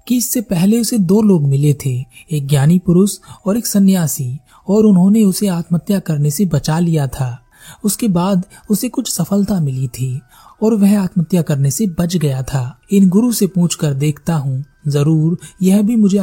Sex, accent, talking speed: male, native, 180 wpm